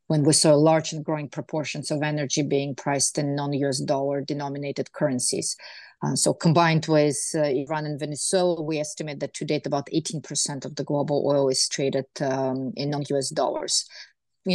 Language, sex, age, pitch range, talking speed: English, female, 30-49, 145-170 Hz, 175 wpm